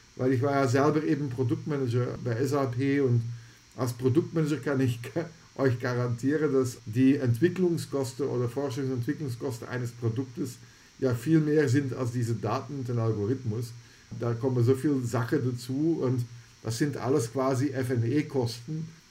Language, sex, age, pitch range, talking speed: German, male, 50-69, 120-145 Hz, 140 wpm